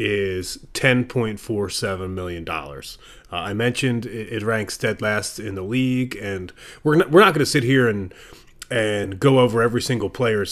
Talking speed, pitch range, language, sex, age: 170 wpm, 110-135 Hz, English, male, 30-49